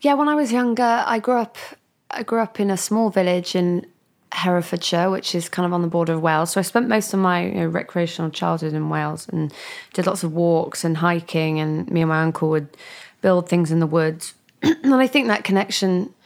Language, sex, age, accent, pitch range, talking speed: English, female, 20-39, British, 165-200 Hz, 225 wpm